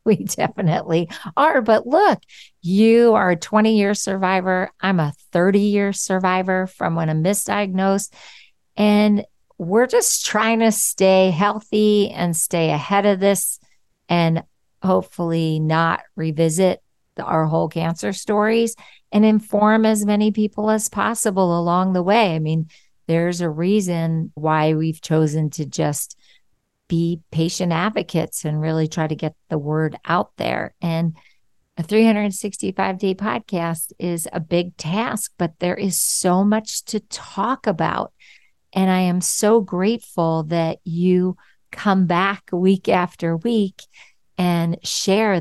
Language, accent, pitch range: English, American, 165-205 Hz